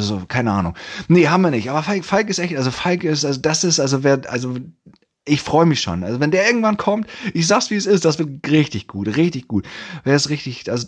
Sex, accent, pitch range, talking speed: male, German, 110-165 Hz, 250 wpm